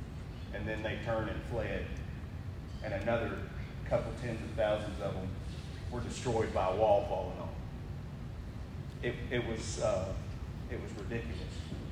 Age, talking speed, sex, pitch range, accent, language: 30-49, 120 wpm, male, 95-125 Hz, American, English